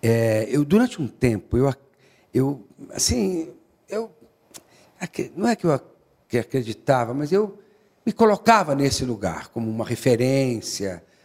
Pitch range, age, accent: 115-180 Hz, 60-79, Brazilian